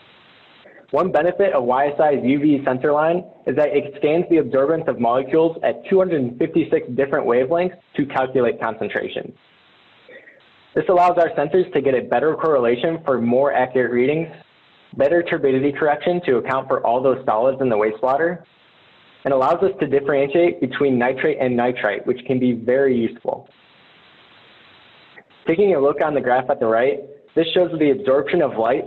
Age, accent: 20-39, American